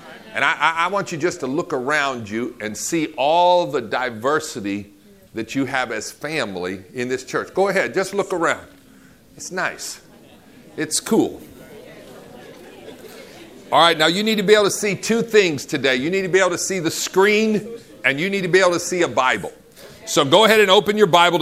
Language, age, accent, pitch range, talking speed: English, 50-69, American, 140-180 Hz, 200 wpm